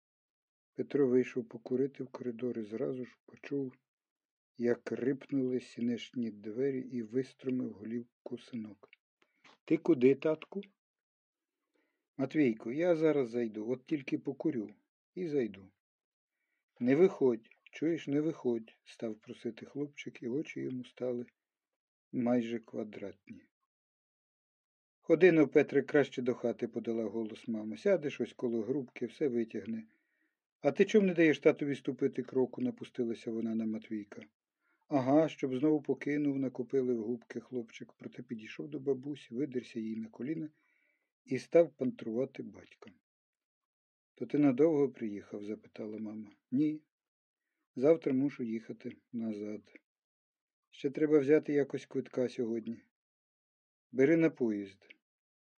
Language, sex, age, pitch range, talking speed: Ukrainian, male, 50-69, 115-145 Hz, 120 wpm